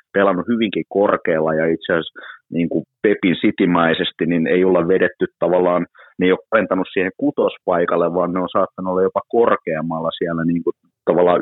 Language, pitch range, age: Finnish, 80-95 Hz, 30-49